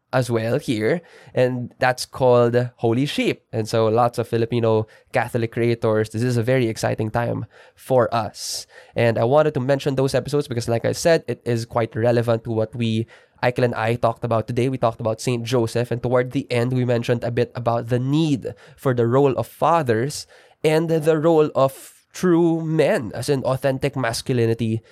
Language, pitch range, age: English, 115-130 Hz, 20-39